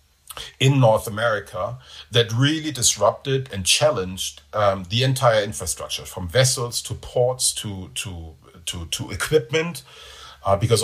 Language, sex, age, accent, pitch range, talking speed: English, male, 50-69, German, 95-120 Hz, 125 wpm